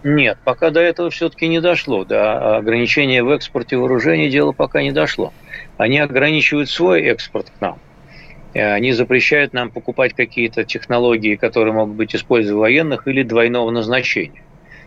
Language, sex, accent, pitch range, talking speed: Russian, male, native, 120-160 Hz, 150 wpm